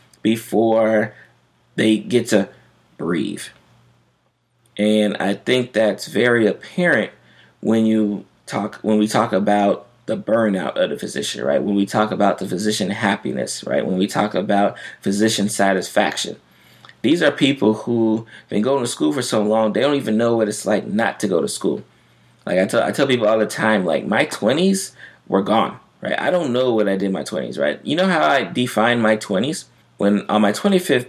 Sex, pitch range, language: male, 100-115 Hz, English